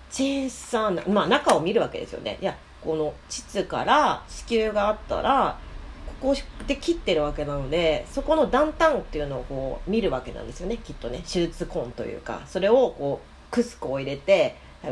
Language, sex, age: Japanese, female, 40-59